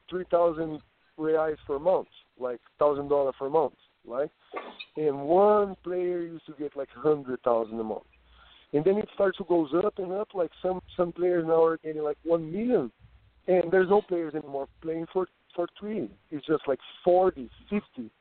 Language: English